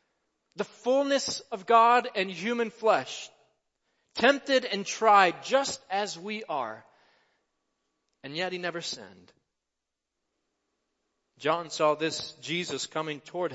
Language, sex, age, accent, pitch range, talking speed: English, male, 40-59, American, 155-200 Hz, 110 wpm